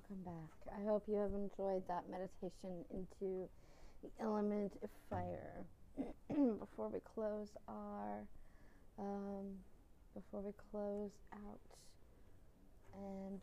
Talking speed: 105 wpm